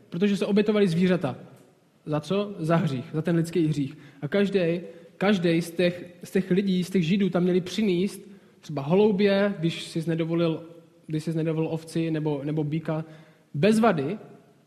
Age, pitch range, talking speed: 20-39, 165-195 Hz, 145 wpm